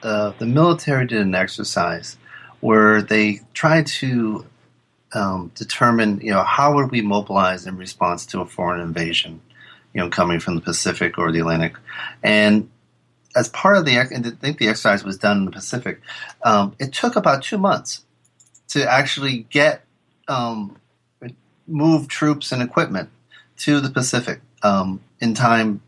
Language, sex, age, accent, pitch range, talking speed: English, male, 30-49, American, 105-140 Hz, 155 wpm